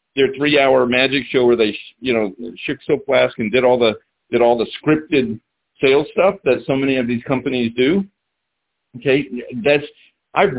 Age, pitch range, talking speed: 50-69, 115-155 Hz, 180 wpm